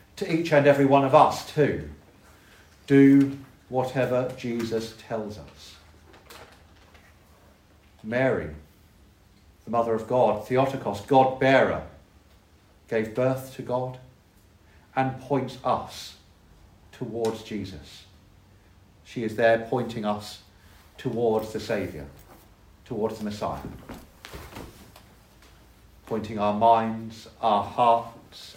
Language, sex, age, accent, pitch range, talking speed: English, male, 50-69, British, 100-150 Hz, 95 wpm